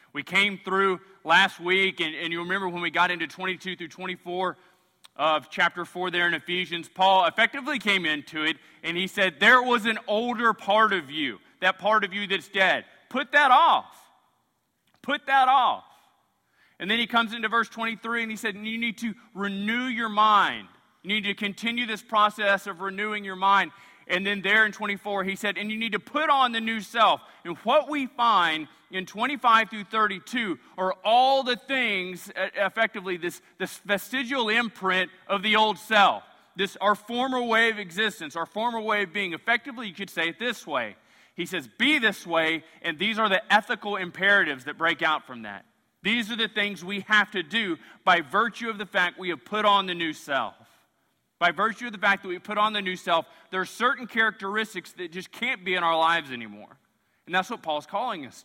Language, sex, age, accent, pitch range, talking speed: English, male, 30-49, American, 180-225 Hz, 205 wpm